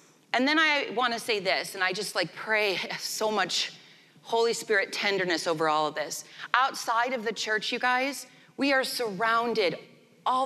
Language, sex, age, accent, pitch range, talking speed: English, female, 30-49, American, 180-230 Hz, 170 wpm